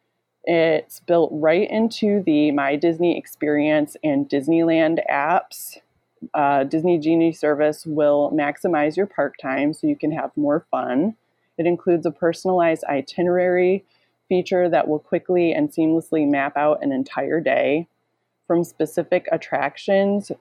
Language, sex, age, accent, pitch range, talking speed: English, female, 20-39, American, 150-180 Hz, 130 wpm